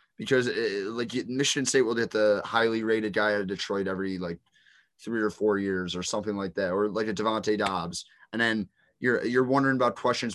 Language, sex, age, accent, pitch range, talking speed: English, male, 20-39, American, 100-120 Hz, 210 wpm